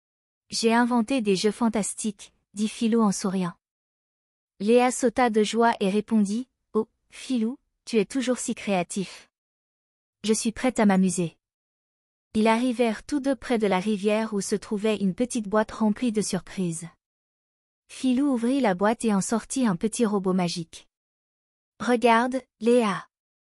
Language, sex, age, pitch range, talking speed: French, female, 20-39, 195-240 Hz, 145 wpm